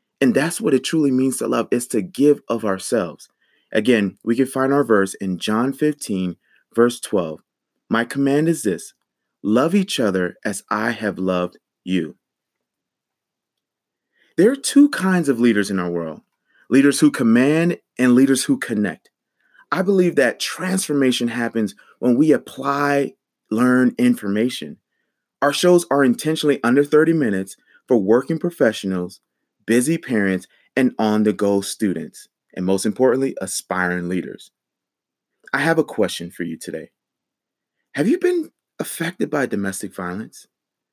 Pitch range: 100-150 Hz